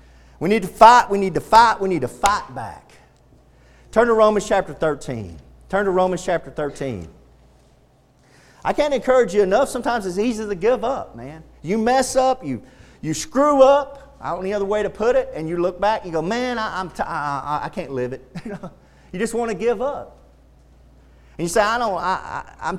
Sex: male